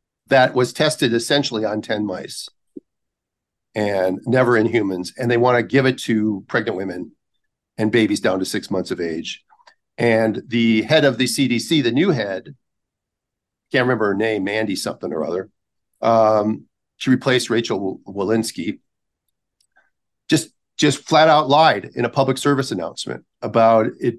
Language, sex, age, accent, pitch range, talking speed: English, male, 50-69, American, 110-130 Hz, 150 wpm